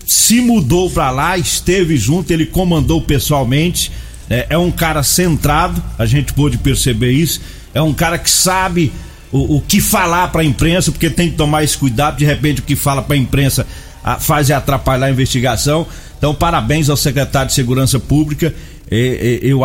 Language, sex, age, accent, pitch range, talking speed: Portuguese, male, 40-59, Brazilian, 130-165 Hz, 175 wpm